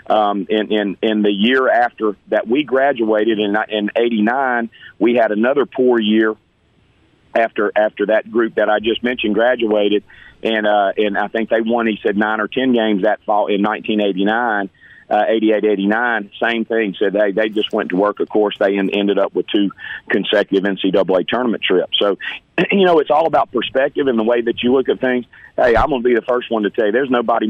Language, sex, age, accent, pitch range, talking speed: English, male, 40-59, American, 105-120 Hz, 225 wpm